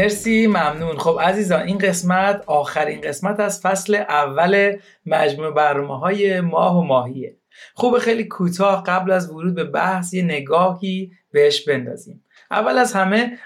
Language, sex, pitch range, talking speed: Persian, male, 155-205 Hz, 140 wpm